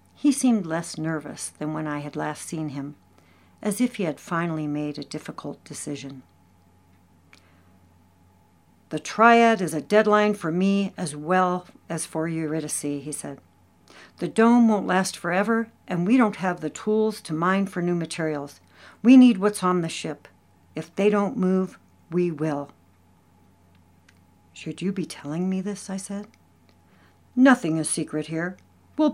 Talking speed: 155 wpm